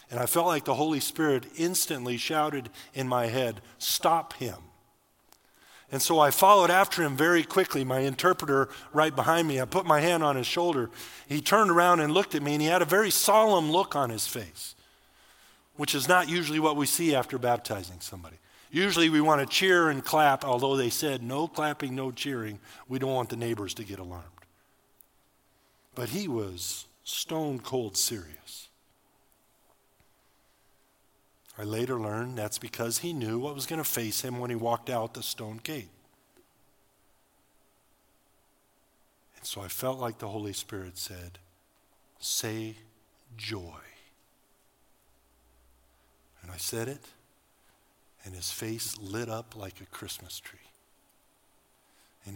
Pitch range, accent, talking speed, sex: 105-150 Hz, American, 155 wpm, male